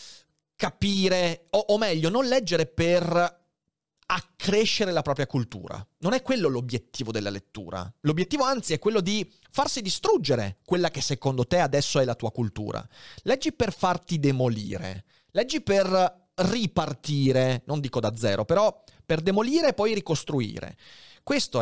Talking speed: 140 wpm